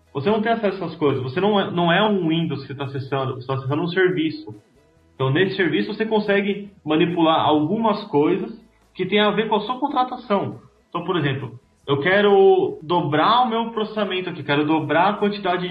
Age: 20-39